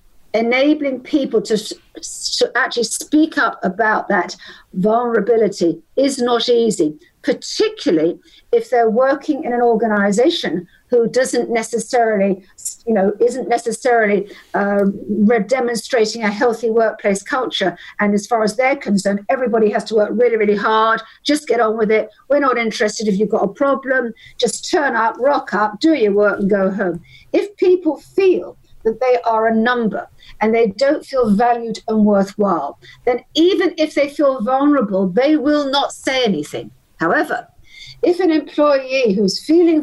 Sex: female